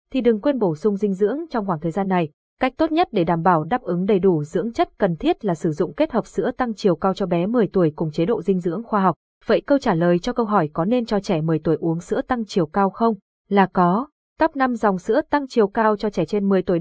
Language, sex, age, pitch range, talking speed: Vietnamese, female, 20-39, 190-245 Hz, 280 wpm